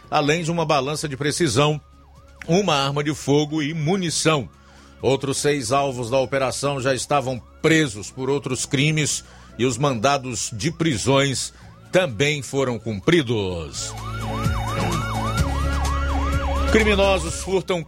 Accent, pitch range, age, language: Brazilian, 115-150 Hz, 50-69, Portuguese